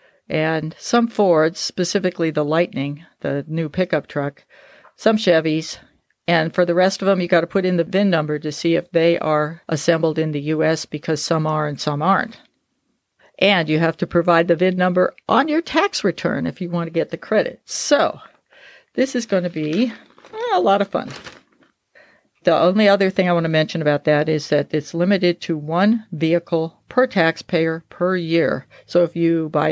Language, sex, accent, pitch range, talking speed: English, female, American, 150-180 Hz, 190 wpm